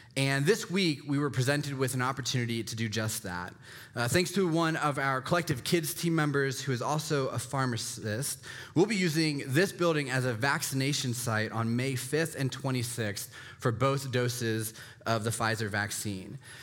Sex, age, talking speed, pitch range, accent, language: male, 20-39, 175 wpm, 125-155 Hz, American, English